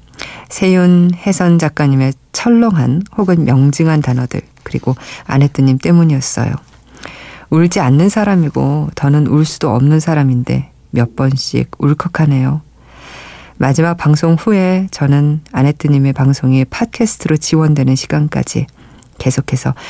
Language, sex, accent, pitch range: Korean, female, native, 135-175 Hz